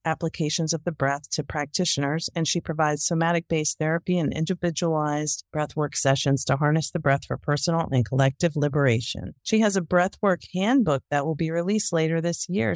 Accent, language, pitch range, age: American, English, 155-190 Hz, 40-59